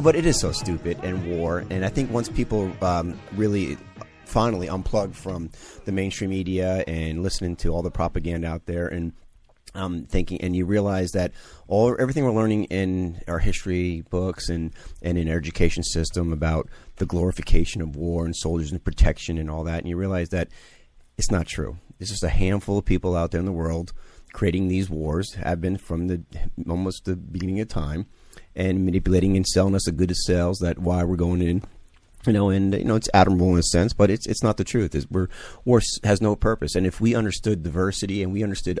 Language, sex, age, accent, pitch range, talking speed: English, male, 30-49, American, 85-100 Hz, 210 wpm